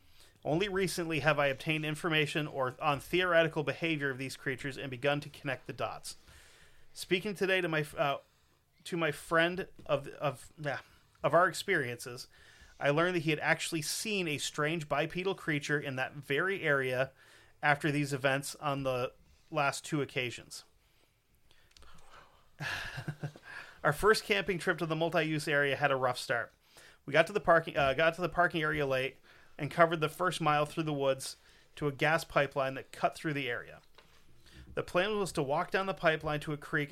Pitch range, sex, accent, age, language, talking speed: 135-165 Hz, male, American, 30-49, English, 175 wpm